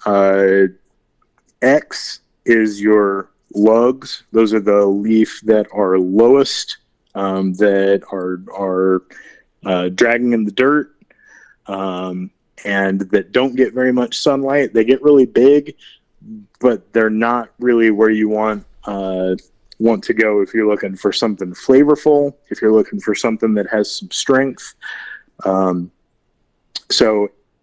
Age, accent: 30-49, American